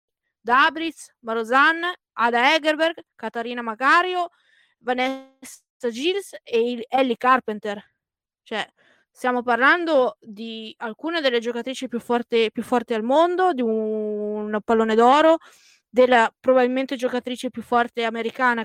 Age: 20-39